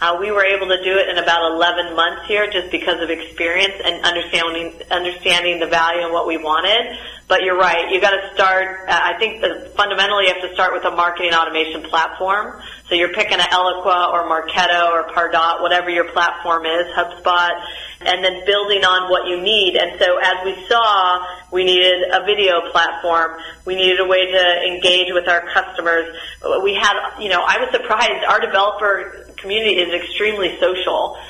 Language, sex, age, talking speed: English, female, 30-49, 190 wpm